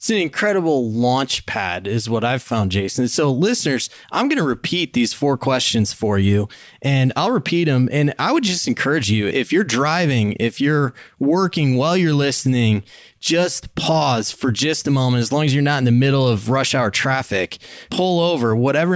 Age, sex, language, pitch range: 20-39, male, English, 115-145 Hz